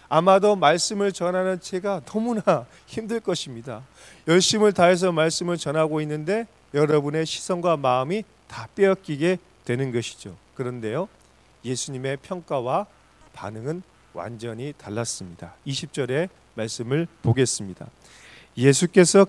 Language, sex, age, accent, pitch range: Korean, male, 30-49, native, 130-190 Hz